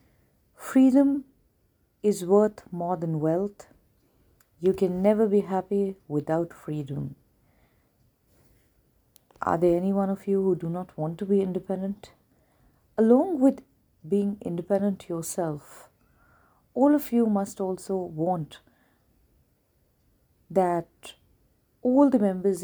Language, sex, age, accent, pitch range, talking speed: Hindi, female, 40-59, native, 160-205 Hz, 110 wpm